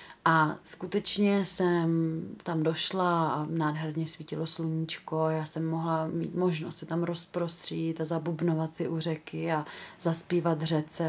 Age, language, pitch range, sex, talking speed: 30-49, Czech, 160-175 Hz, female, 135 wpm